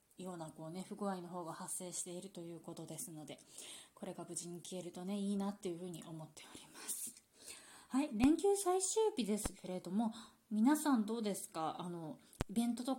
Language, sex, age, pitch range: Japanese, female, 20-39, 170-215 Hz